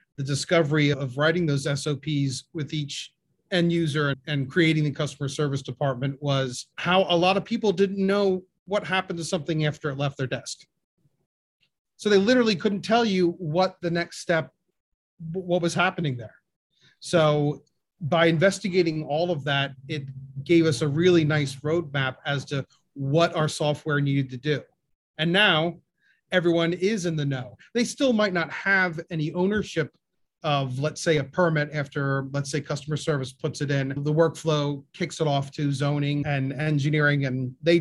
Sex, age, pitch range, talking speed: male, 30-49, 140-170 Hz, 170 wpm